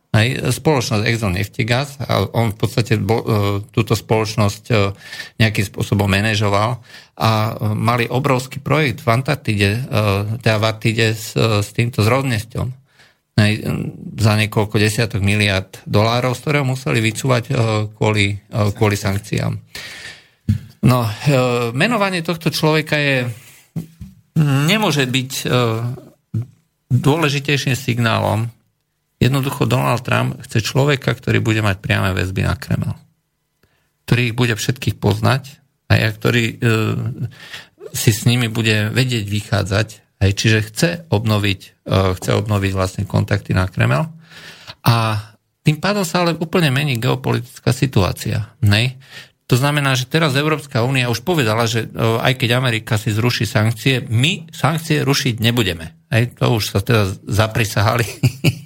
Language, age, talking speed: Slovak, 50-69, 125 wpm